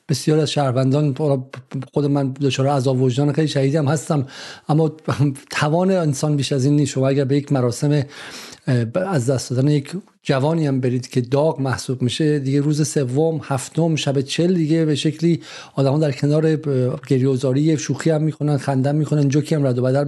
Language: Persian